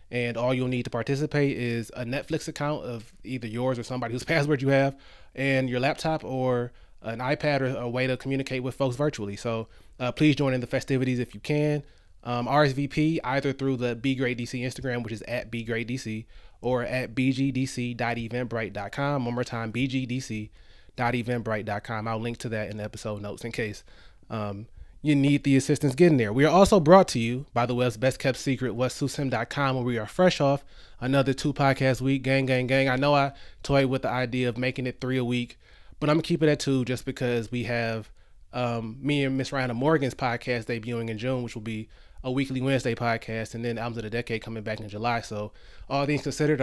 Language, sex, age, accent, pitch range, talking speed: English, male, 20-39, American, 115-135 Hz, 210 wpm